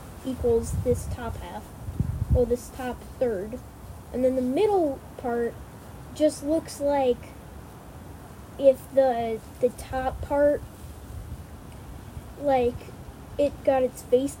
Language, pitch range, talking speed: English, 255-315 Hz, 110 wpm